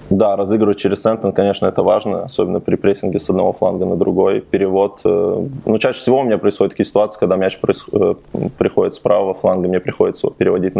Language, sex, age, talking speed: Russian, male, 20-39, 190 wpm